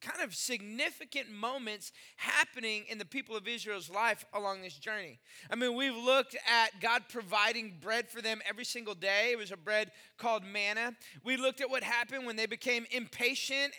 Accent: American